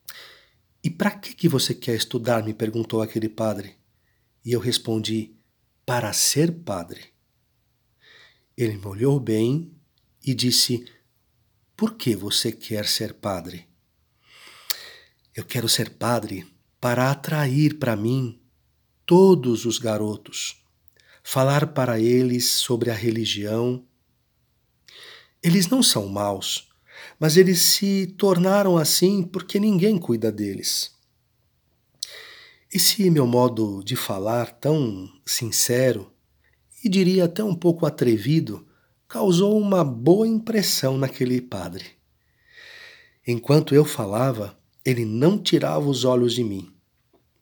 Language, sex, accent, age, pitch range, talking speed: Portuguese, male, Brazilian, 50-69, 115-165 Hz, 115 wpm